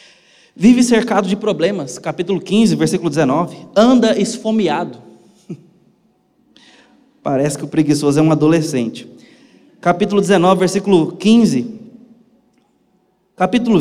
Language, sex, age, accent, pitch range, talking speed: Portuguese, male, 20-39, Brazilian, 145-200 Hz, 95 wpm